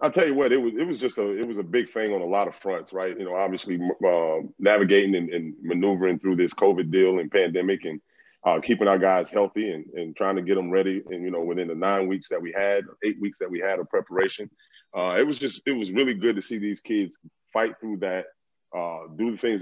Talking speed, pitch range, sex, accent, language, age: 250 wpm, 90-100 Hz, male, American, English, 30-49